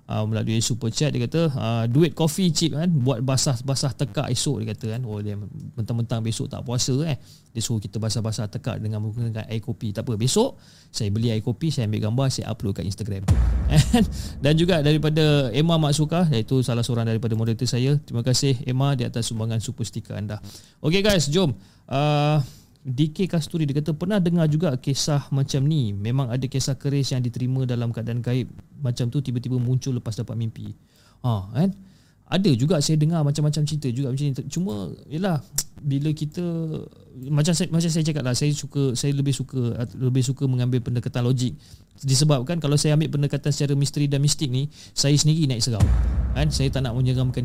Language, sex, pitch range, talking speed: Malay, male, 115-150 Hz, 180 wpm